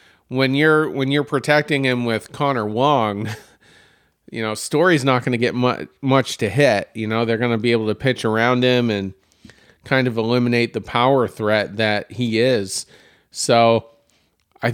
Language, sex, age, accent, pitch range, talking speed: English, male, 40-59, American, 110-135 Hz, 175 wpm